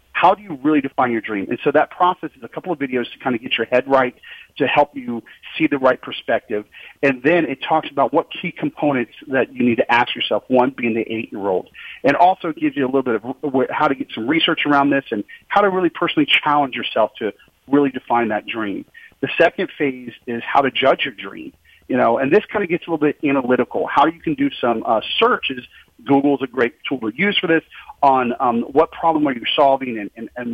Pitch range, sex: 125-165 Hz, male